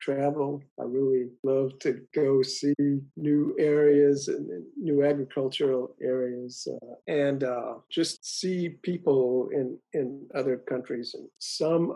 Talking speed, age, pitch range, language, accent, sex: 125 wpm, 50-69, 130-145 Hz, English, American, male